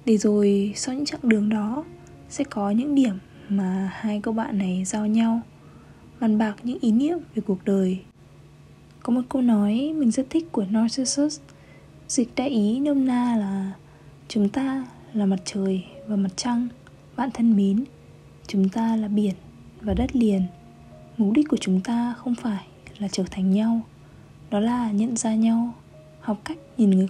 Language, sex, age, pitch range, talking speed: Vietnamese, female, 20-39, 200-245 Hz, 175 wpm